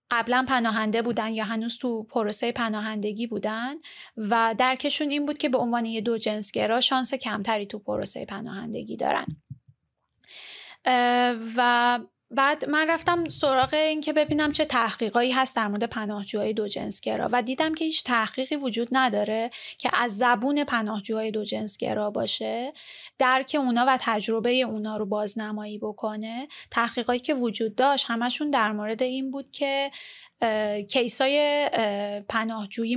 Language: Persian